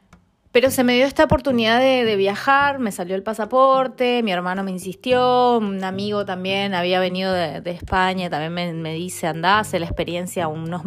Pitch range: 170-225 Hz